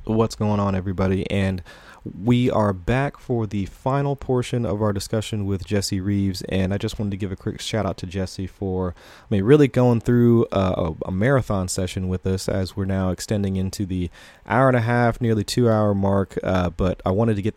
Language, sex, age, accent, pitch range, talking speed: English, male, 30-49, American, 95-115 Hz, 210 wpm